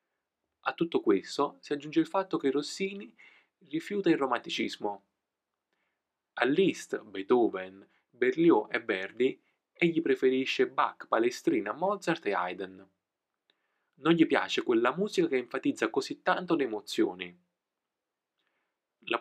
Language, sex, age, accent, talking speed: Italian, male, 20-39, native, 115 wpm